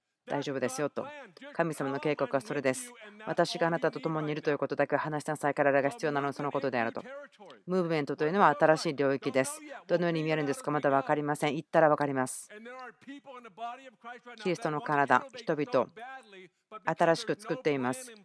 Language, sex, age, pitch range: Japanese, female, 40-59, 150-210 Hz